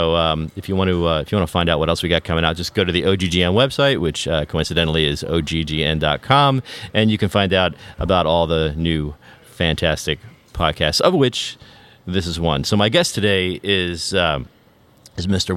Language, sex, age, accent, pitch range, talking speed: English, male, 40-59, American, 80-100 Hz, 215 wpm